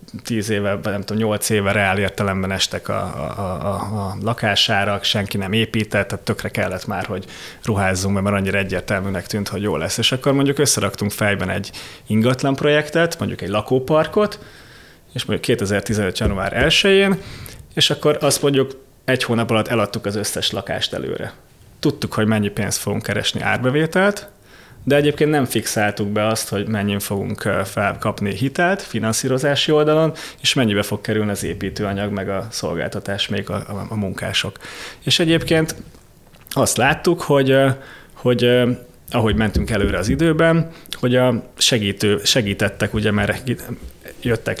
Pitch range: 100-125 Hz